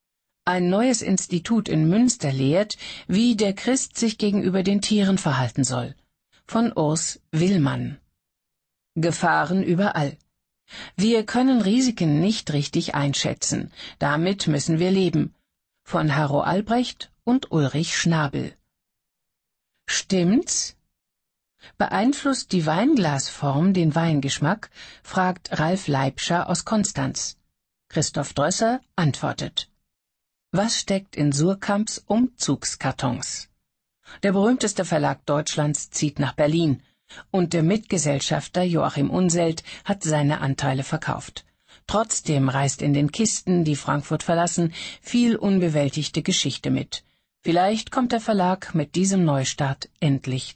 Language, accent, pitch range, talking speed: German, German, 150-205 Hz, 110 wpm